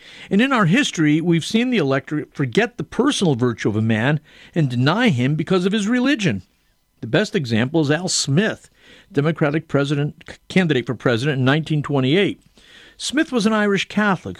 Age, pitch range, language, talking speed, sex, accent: 50-69, 135-175 Hz, English, 165 wpm, male, American